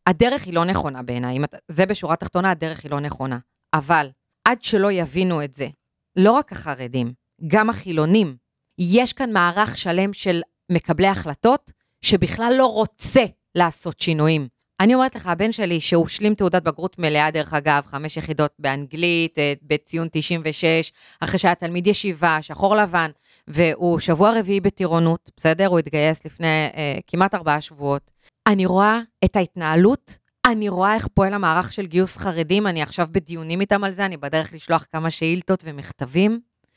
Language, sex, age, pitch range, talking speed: Hebrew, female, 30-49, 160-210 Hz, 155 wpm